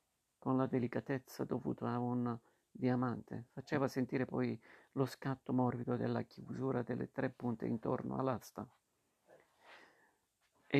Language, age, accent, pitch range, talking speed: Italian, 50-69, native, 125-135 Hz, 115 wpm